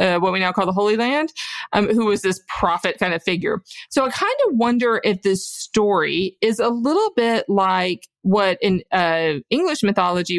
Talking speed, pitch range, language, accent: 195 wpm, 185-245 Hz, English, American